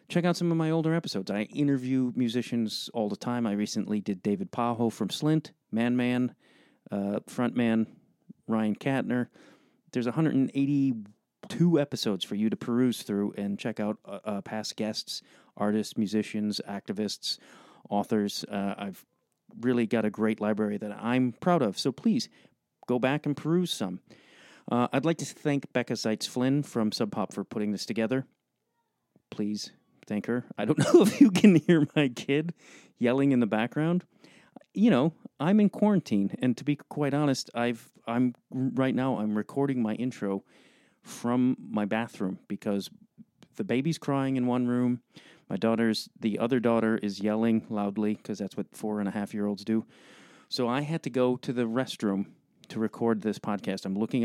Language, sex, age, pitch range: English, male, 40-59, 105-140 Hz